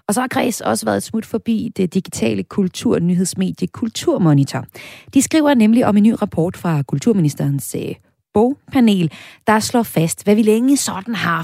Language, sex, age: Danish, female, 30-49